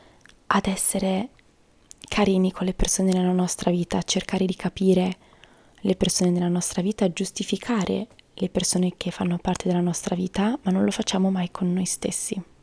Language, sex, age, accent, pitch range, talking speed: Italian, female, 20-39, native, 180-210 Hz, 160 wpm